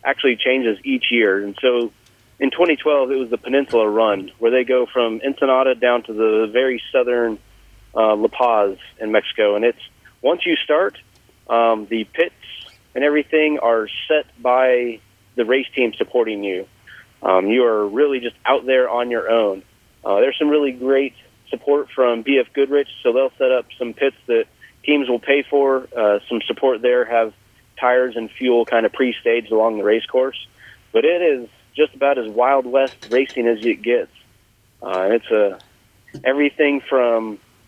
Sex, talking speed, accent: male, 170 wpm, American